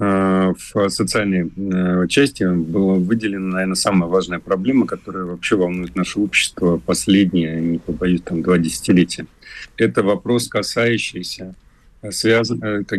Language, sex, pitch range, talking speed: Russian, male, 90-105 Hz, 110 wpm